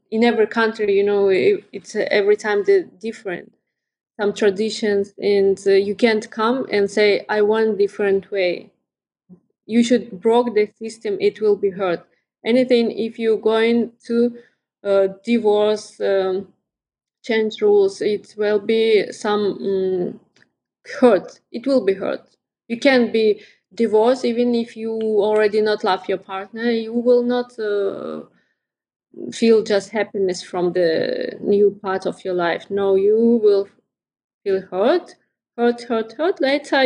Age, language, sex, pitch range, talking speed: 20-39, English, female, 195-230 Hz, 145 wpm